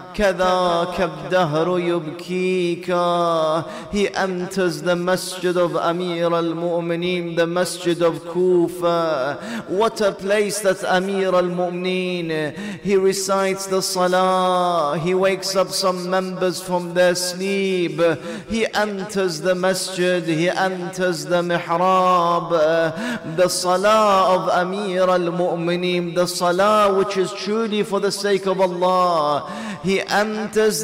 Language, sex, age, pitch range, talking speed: English, male, 30-49, 175-210 Hz, 105 wpm